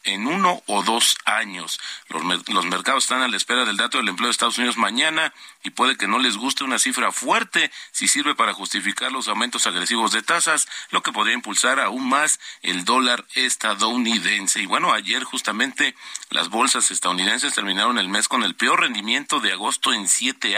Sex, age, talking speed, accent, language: male, 40-59, 190 wpm, Mexican, Spanish